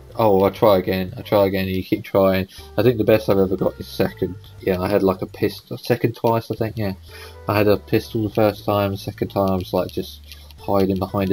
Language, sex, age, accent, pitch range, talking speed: English, male, 20-39, British, 90-105 Hz, 245 wpm